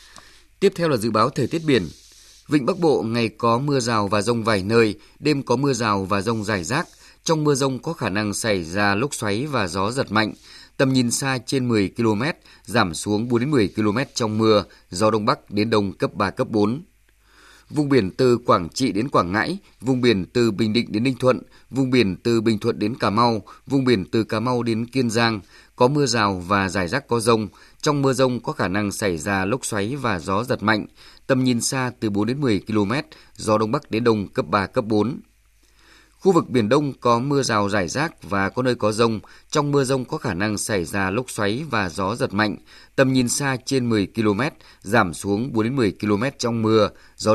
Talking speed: 225 wpm